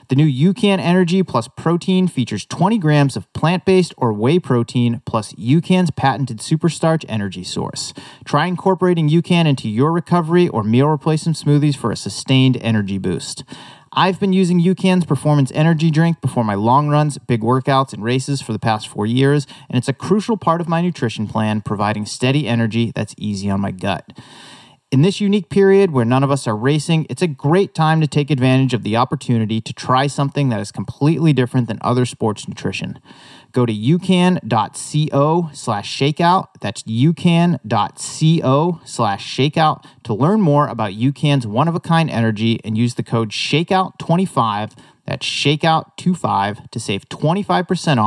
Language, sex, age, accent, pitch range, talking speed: English, male, 30-49, American, 120-170 Hz, 160 wpm